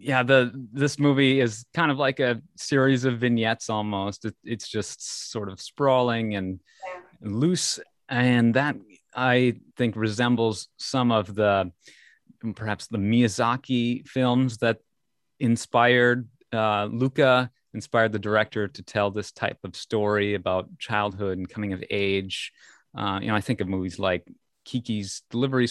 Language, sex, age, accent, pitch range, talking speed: English, male, 30-49, American, 95-120 Hz, 145 wpm